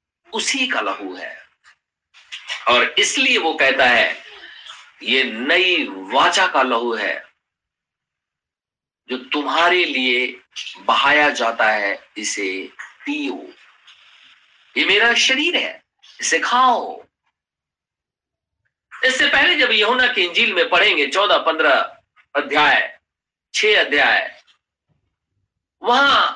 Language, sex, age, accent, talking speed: Hindi, male, 50-69, native, 100 wpm